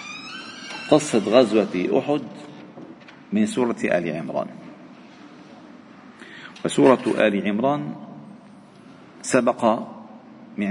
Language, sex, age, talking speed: Arabic, male, 50-69, 65 wpm